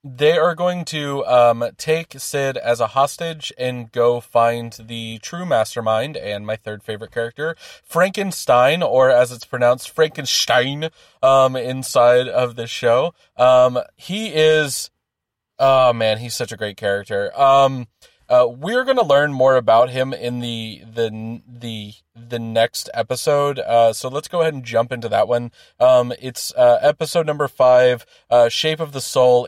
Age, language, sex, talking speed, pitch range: 20-39, English, male, 160 wpm, 120-155 Hz